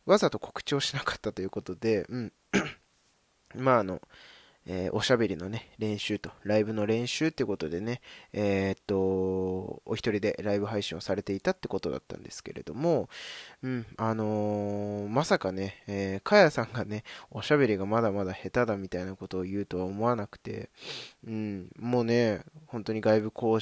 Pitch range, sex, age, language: 95-120 Hz, male, 20-39, Japanese